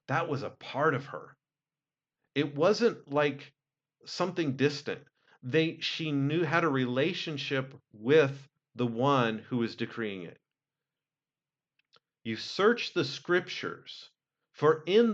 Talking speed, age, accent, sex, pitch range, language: 120 wpm, 40-59, American, male, 120-155 Hz, English